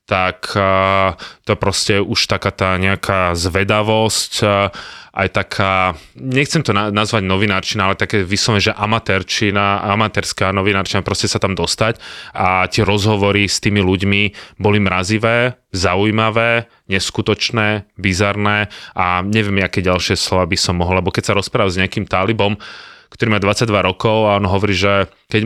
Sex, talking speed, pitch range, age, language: male, 145 wpm, 95-105 Hz, 20-39, Slovak